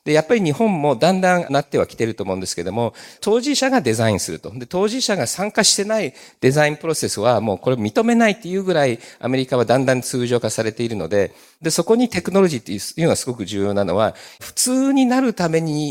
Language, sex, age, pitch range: Japanese, male, 50-69, 115-180 Hz